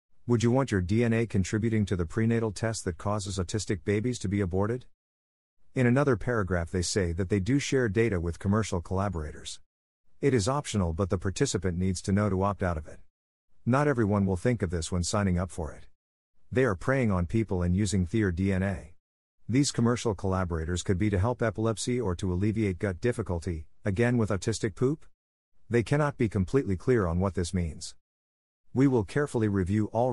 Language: English